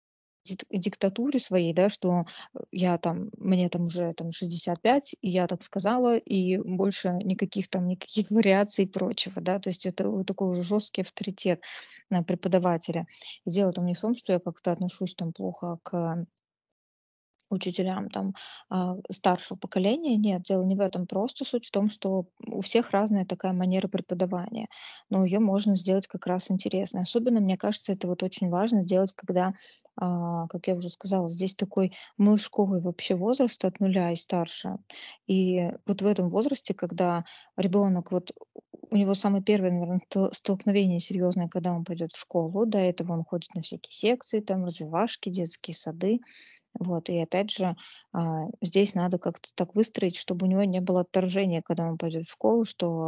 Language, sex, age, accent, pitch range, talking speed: Russian, female, 20-39, native, 180-205 Hz, 165 wpm